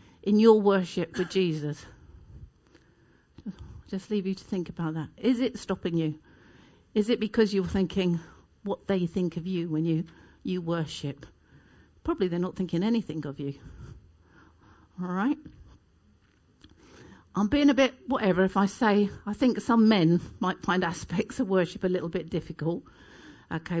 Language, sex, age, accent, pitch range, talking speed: English, female, 50-69, British, 175-255 Hz, 155 wpm